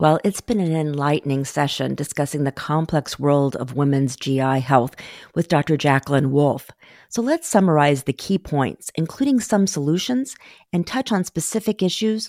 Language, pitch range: English, 145-210 Hz